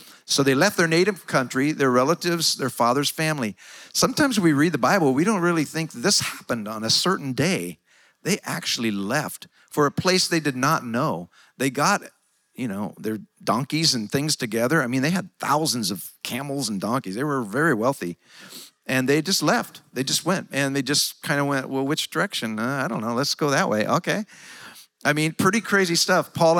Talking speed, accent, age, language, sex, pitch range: 200 wpm, American, 50-69, English, male, 130-170 Hz